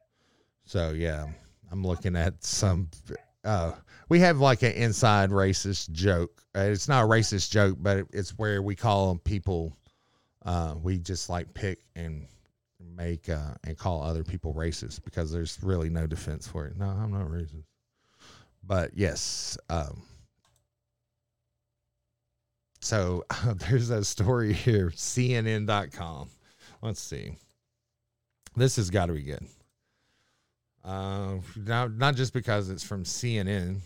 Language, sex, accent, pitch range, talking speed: English, male, American, 85-115 Hz, 135 wpm